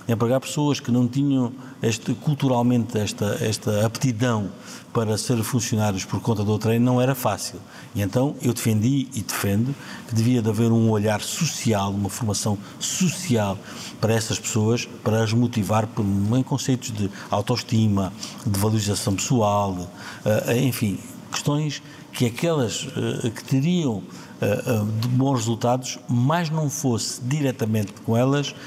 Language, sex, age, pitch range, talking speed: Portuguese, male, 50-69, 105-130 Hz, 135 wpm